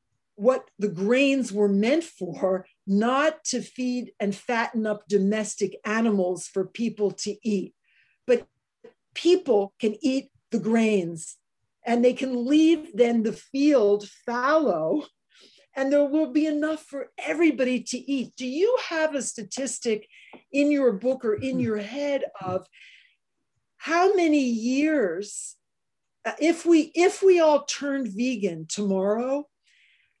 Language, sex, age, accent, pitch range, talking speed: English, female, 50-69, American, 205-280 Hz, 130 wpm